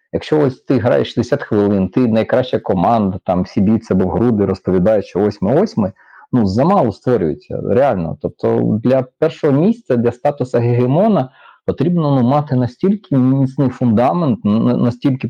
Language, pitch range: Ukrainian, 105-145 Hz